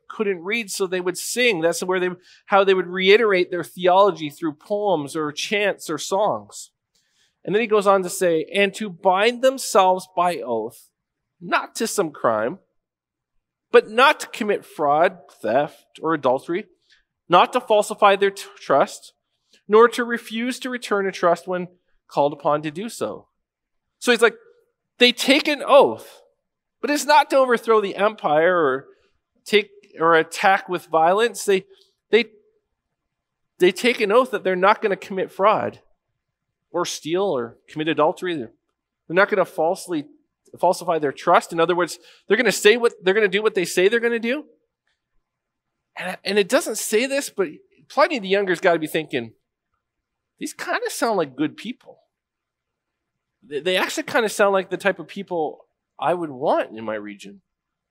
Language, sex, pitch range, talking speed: English, male, 175-235 Hz, 175 wpm